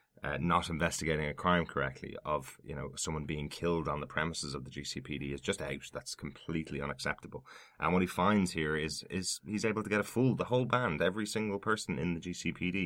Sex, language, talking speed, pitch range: male, English, 215 wpm, 75-90 Hz